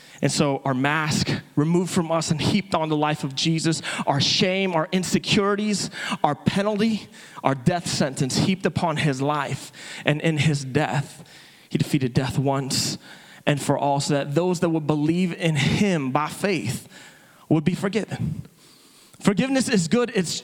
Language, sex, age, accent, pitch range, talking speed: English, male, 30-49, American, 155-190 Hz, 160 wpm